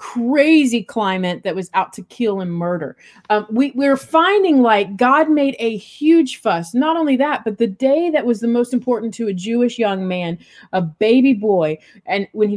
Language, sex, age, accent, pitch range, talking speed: English, female, 30-49, American, 195-260 Hz, 190 wpm